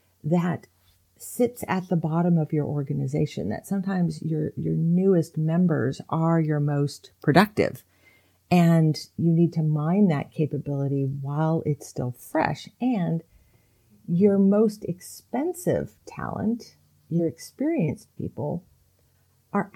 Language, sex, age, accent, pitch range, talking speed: English, female, 50-69, American, 135-180 Hz, 115 wpm